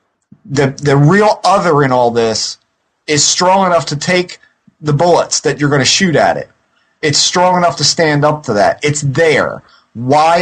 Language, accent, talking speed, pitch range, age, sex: English, American, 180 wpm, 135-170 Hz, 30-49, male